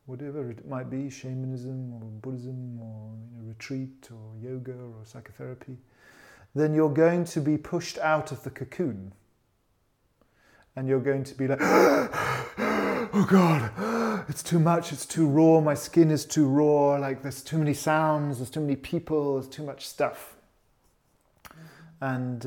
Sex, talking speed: male, 155 wpm